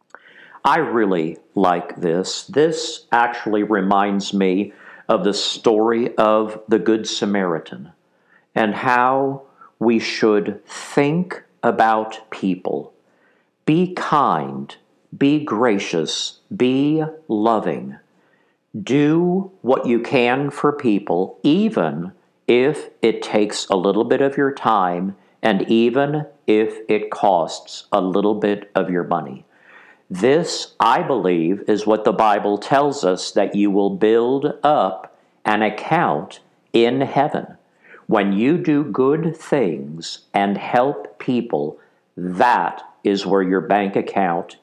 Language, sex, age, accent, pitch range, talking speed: English, male, 50-69, American, 100-140 Hz, 115 wpm